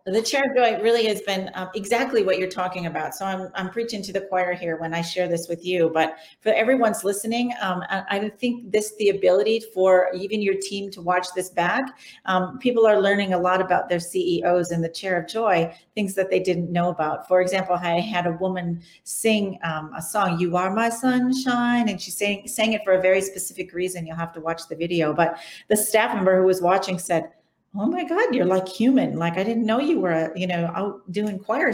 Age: 40-59